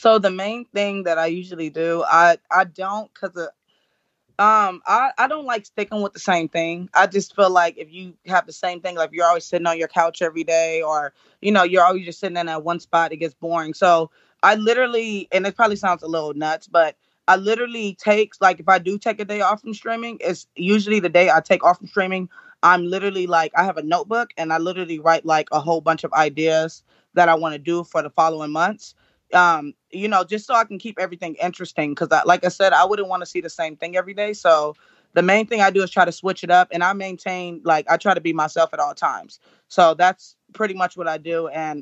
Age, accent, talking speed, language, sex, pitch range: 20-39, American, 245 wpm, English, female, 165-195 Hz